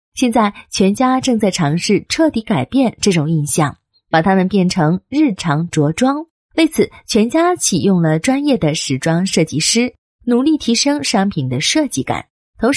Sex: female